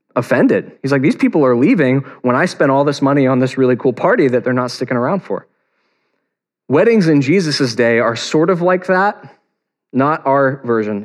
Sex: male